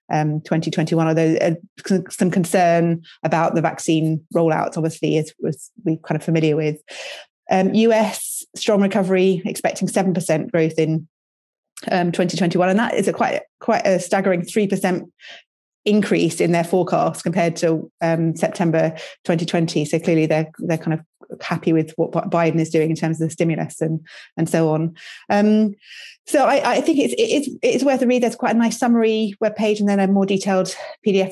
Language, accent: English, British